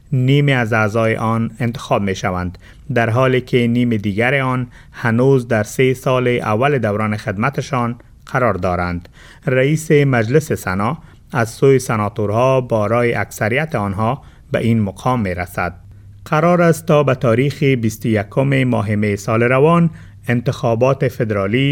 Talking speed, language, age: 135 wpm, Persian, 30-49